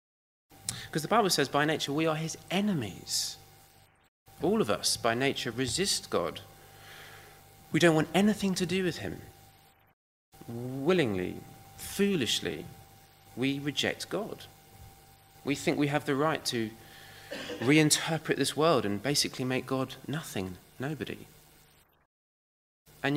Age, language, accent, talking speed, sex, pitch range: 30-49, English, British, 120 wpm, male, 105-150 Hz